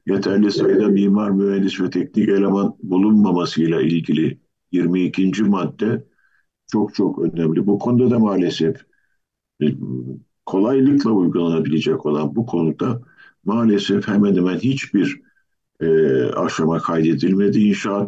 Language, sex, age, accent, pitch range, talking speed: Turkish, male, 50-69, native, 95-110 Hz, 105 wpm